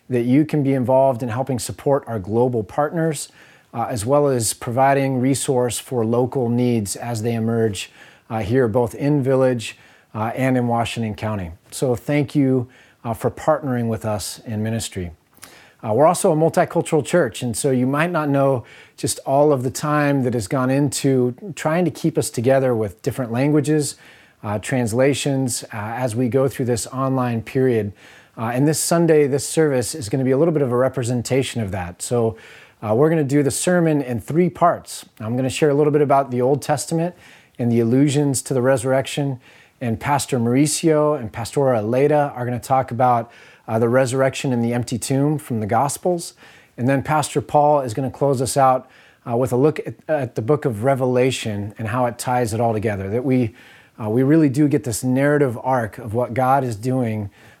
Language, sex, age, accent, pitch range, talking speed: English, male, 30-49, American, 120-145 Hz, 200 wpm